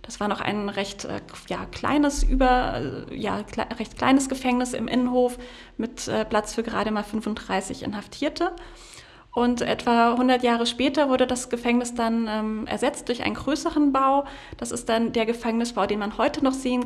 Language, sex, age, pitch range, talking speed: German, female, 30-49, 215-250 Hz, 150 wpm